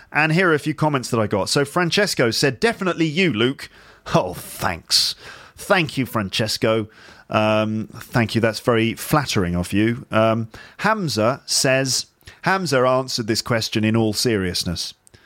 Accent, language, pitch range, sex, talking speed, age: British, English, 110-145 Hz, male, 150 wpm, 40-59